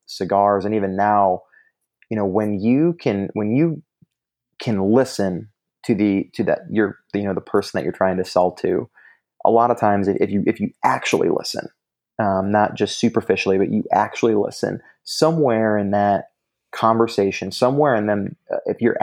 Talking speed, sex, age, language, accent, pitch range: 175 wpm, male, 30-49, English, American, 100-120 Hz